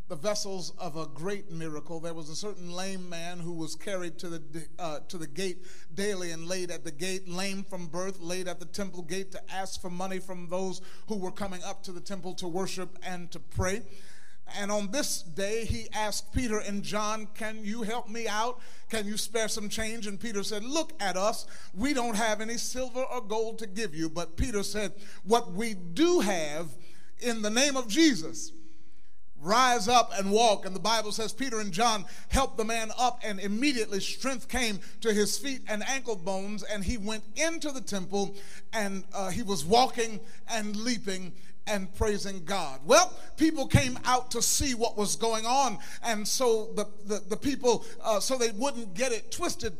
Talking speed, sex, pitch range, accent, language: 200 wpm, male, 185-230 Hz, American, English